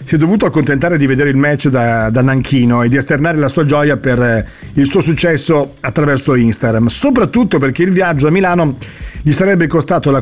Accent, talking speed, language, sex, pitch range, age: native, 195 wpm, Italian, male, 135-170 Hz, 40-59